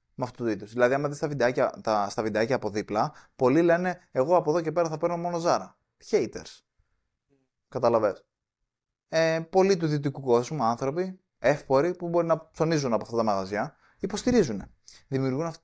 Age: 20-39